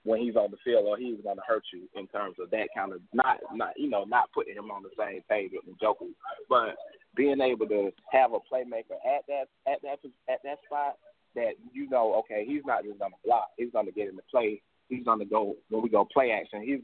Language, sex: English, male